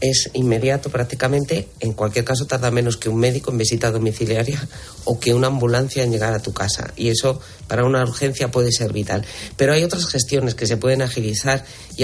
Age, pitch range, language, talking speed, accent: 40-59, 115-140 Hz, Spanish, 200 wpm, Spanish